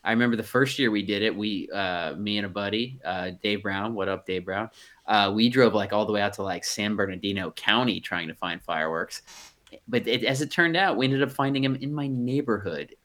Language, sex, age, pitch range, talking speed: English, male, 30-49, 105-125 Hz, 240 wpm